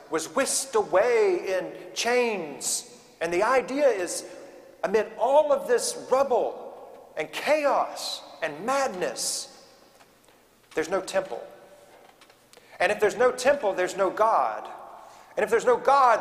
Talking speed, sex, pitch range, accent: 125 wpm, male, 175-295 Hz, American